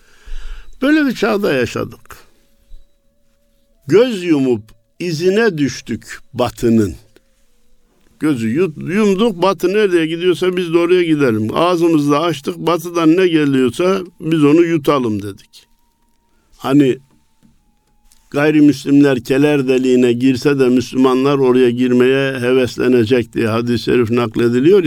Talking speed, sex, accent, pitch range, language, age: 100 wpm, male, native, 120-175 Hz, Turkish, 60-79